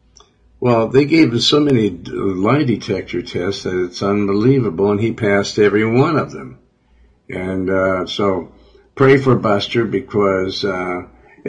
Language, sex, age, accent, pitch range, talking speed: English, male, 60-79, American, 95-120 Hz, 140 wpm